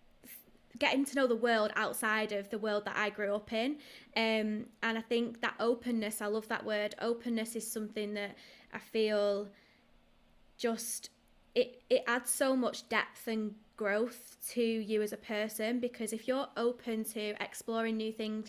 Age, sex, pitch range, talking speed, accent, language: 20-39, female, 210-230 Hz, 170 wpm, British, English